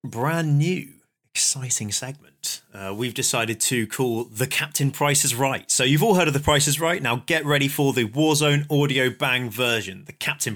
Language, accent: English, British